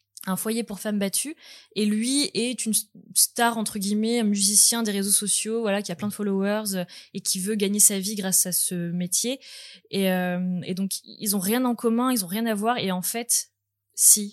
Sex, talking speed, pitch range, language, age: female, 215 wpm, 185-225 Hz, French, 20-39